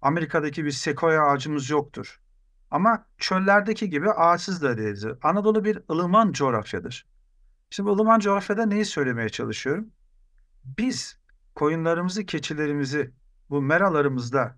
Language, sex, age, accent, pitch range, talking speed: Turkish, male, 50-69, native, 135-185 Hz, 110 wpm